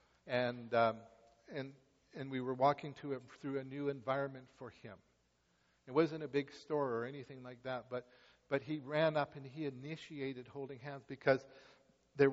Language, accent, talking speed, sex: English, American, 175 wpm, male